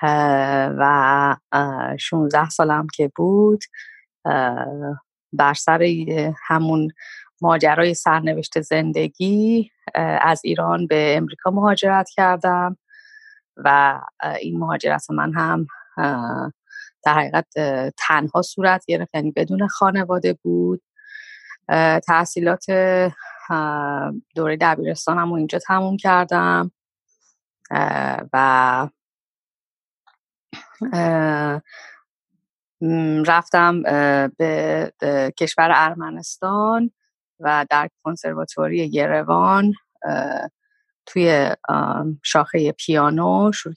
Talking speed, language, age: 75 wpm, Persian, 30-49